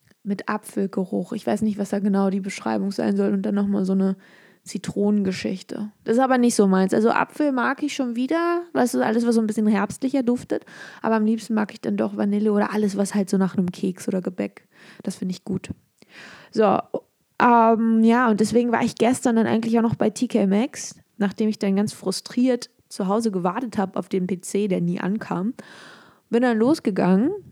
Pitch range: 195-255 Hz